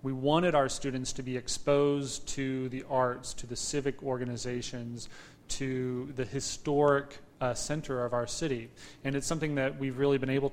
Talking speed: 170 wpm